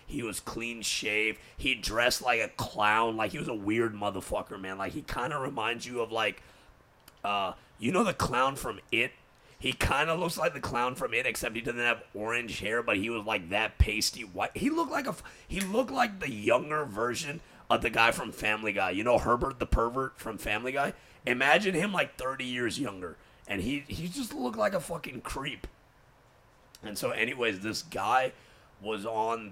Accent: American